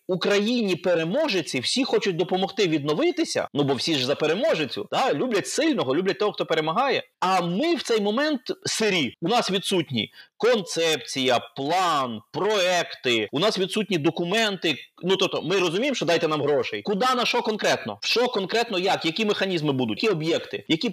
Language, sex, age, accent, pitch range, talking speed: Ukrainian, male, 30-49, native, 155-210 Hz, 165 wpm